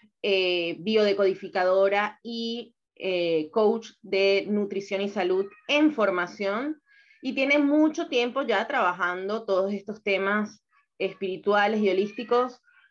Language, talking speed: Spanish, 105 wpm